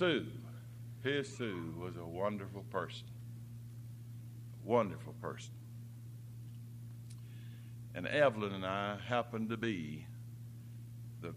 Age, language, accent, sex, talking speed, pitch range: 60-79, English, American, male, 90 wpm, 115-120 Hz